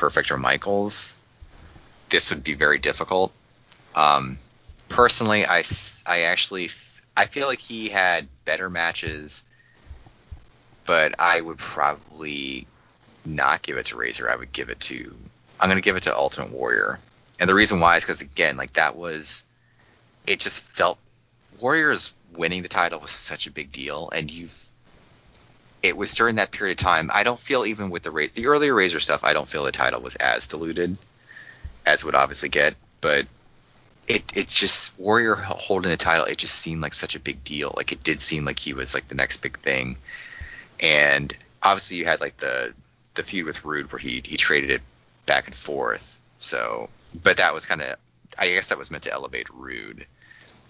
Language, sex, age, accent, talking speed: English, male, 20-39, American, 185 wpm